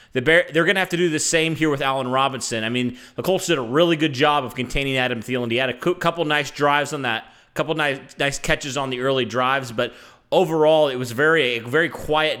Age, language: 30-49, English